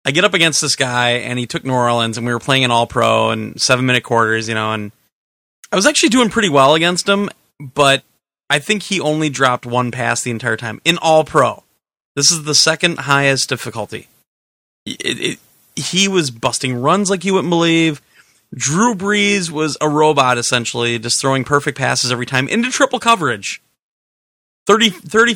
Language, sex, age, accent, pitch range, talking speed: English, male, 30-49, American, 125-175 Hz, 190 wpm